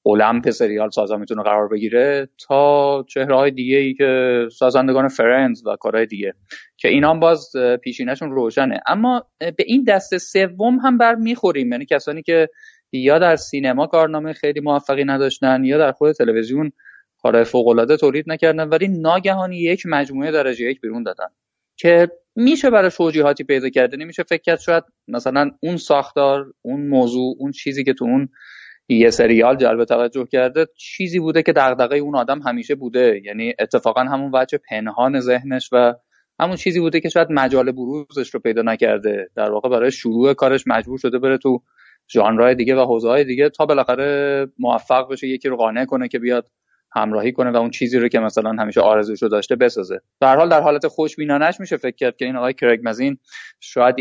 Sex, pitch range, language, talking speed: male, 125-160 Hz, Persian, 175 wpm